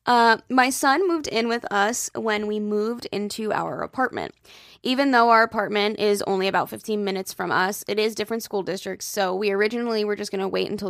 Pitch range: 200-230 Hz